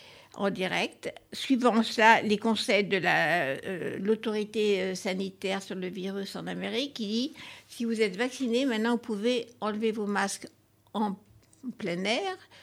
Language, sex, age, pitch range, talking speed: French, female, 60-79, 210-255 Hz, 150 wpm